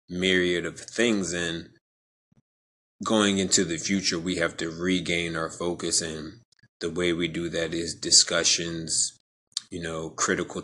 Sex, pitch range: male, 85-95 Hz